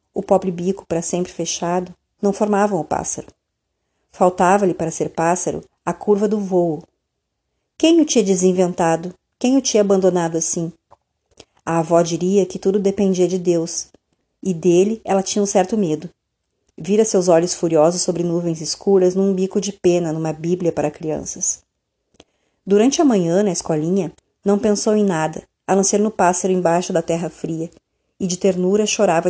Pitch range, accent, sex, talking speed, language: 170-205 Hz, Brazilian, female, 160 wpm, Portuguese